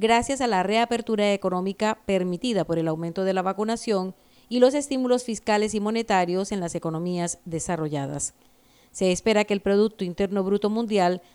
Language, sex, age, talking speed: Spanish, female, 40-59, 160 wpm